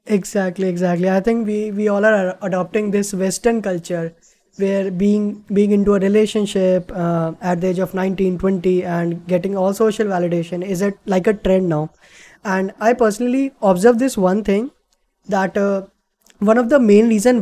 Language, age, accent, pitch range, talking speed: Hindi, 20-39, native, 190-230 Hz, 170 wpm